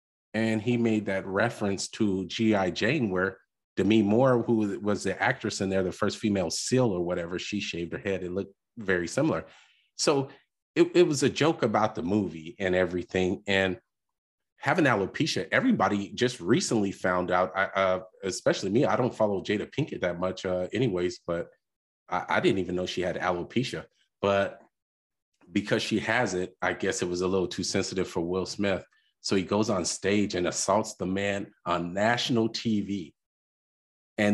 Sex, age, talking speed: male, 30-49, 175 wpm